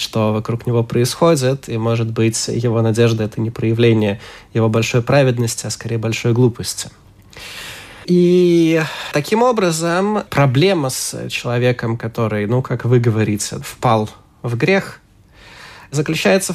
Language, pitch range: Ukrainian, 120-160 Hz